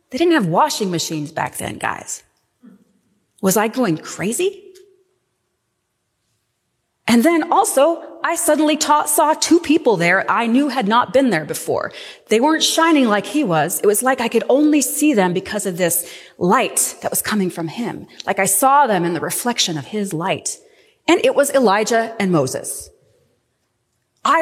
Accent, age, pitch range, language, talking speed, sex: American, 30-49, 210-320 Hz, English, 165 wpm, female